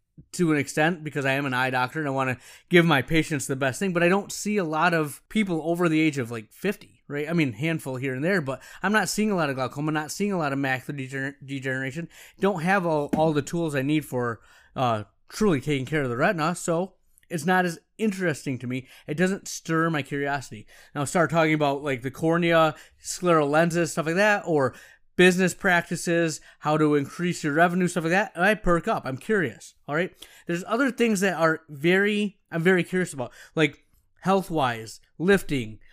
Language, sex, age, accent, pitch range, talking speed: English, male, 30-49, American, 145-190 Hz, 210 wpm